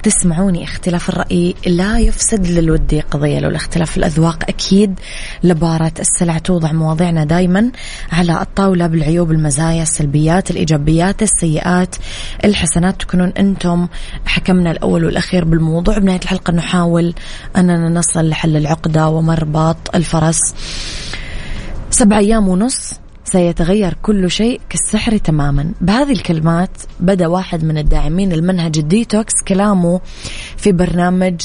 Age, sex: 20-39, female